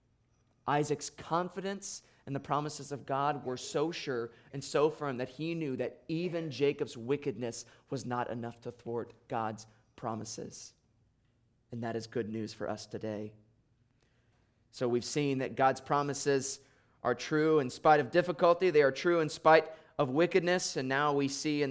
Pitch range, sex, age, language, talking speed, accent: 120-145 Hz, male, 30-49, English, 165 wpm, American